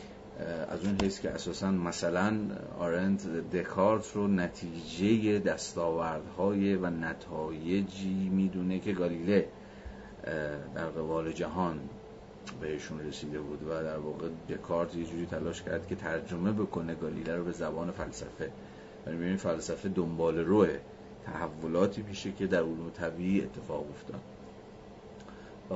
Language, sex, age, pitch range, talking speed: Persian, male, 30-49, 80-95 Hz, 120 wpm